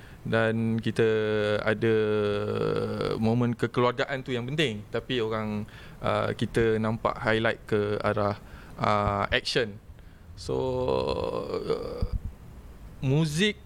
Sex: male